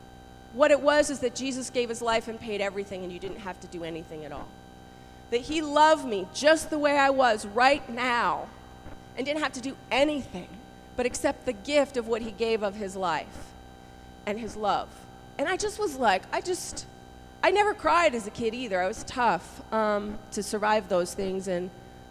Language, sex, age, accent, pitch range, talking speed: English, female, 40-59, American, 225-330 Hz, 205 wpm